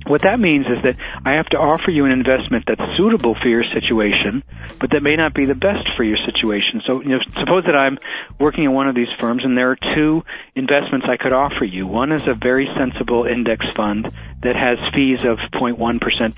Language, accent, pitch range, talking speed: English, American, 110-135 Hz, 220 wpm